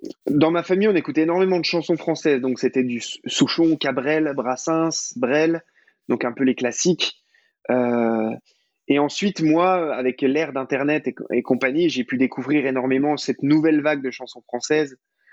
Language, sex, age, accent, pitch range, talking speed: French, male, 20-39, French, 130-160 Hz, 160 wpm